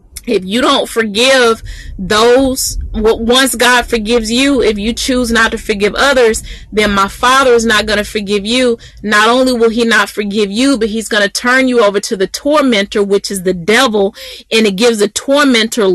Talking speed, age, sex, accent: 195 wpm, 30-49, female, American